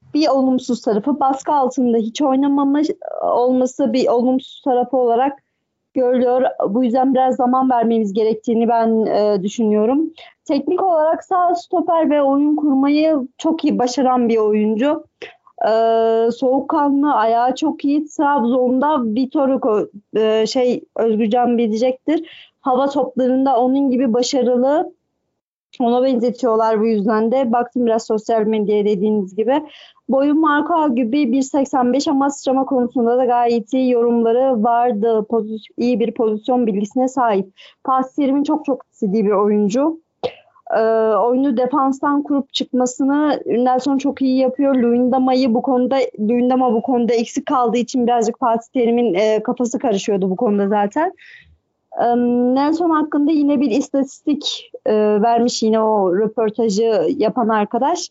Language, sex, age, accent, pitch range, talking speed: Turkish, female, 40-59, native, 230-280 Hz, 130 wpm